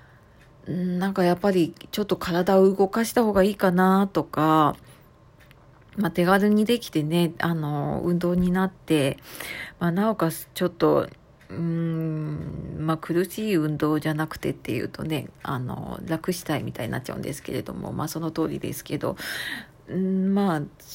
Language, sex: Japanese, female